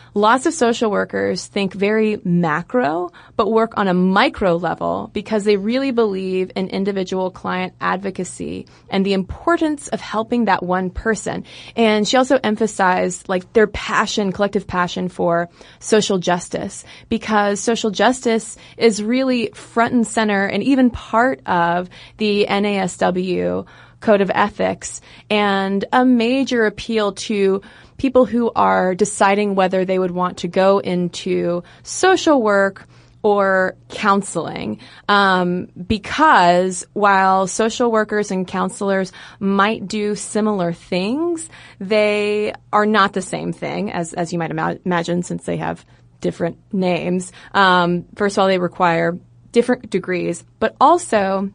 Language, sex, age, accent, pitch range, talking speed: English, female, 20-39, American, 180-220 Hz, 135 wpm